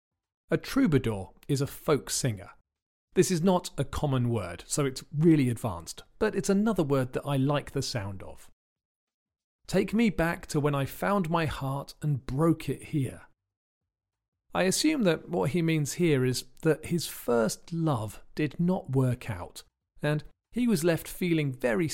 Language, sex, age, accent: English, male, 40-59, British